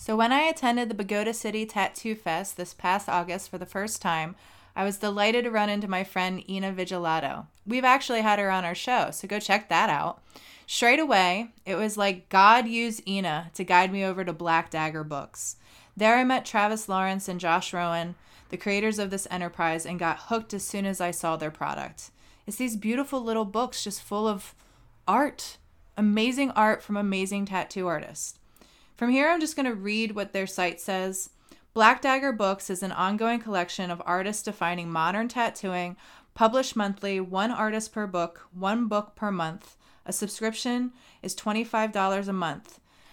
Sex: female